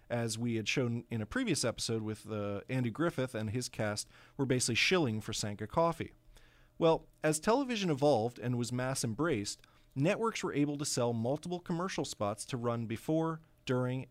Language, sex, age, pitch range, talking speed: English, male, 40-59, 110-160 Hz, 170 wpm